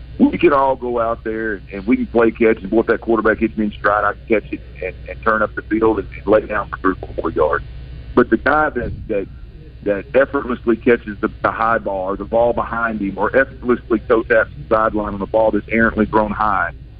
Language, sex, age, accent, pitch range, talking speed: English, male, 50-69, American, 105-120 Hz, 240 wpm